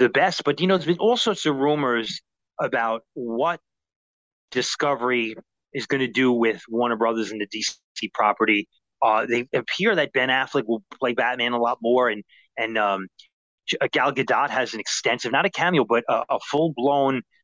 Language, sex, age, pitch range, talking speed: English, male, 30-49, 115-155 Hz, 180 wpm